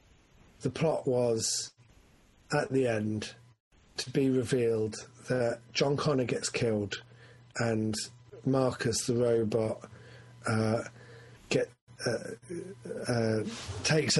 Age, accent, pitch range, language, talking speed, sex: 30-49, British, 115-135 Hz, English, 95 wpm, male